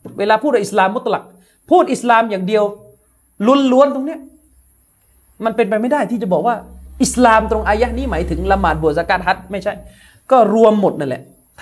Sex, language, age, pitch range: male, Thai, 30-49, 165-250 Hz